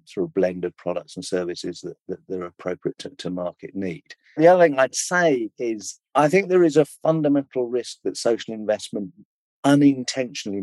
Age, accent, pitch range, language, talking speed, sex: 50-69, British, 95-140 Hz, English, 180 wpm, male